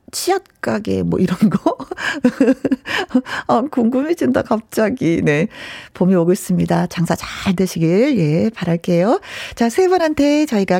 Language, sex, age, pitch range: Korean, female, 40-59, 180-285 Hz